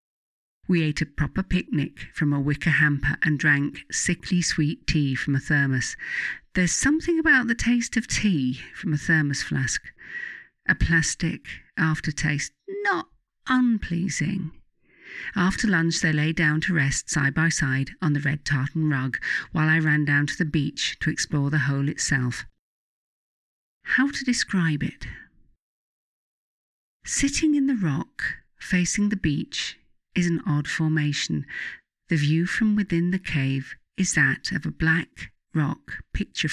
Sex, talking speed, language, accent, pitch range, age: female, 145 wpm, English, British, 145-180 Hz, 50-69